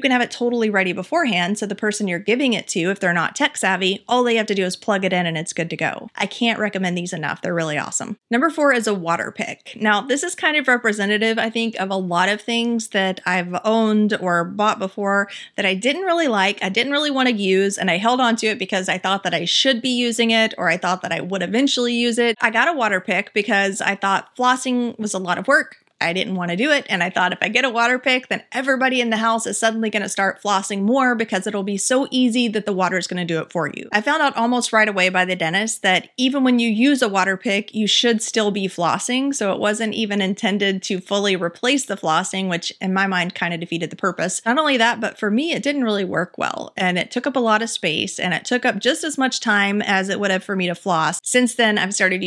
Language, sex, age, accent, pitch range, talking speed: English, female, 30-49, American, 185-240 Hz, 270 wpm